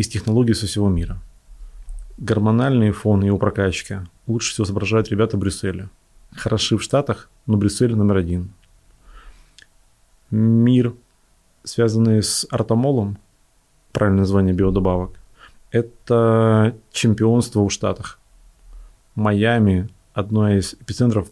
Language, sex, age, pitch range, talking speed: Russian, male, 30-49, 95-115 Hz, 105 wpm